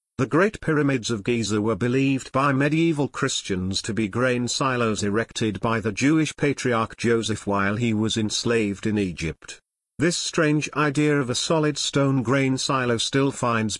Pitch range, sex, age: 110-140 Hz, male, 50-69